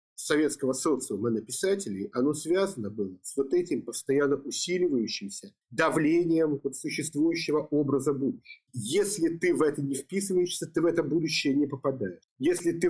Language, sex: Russian, male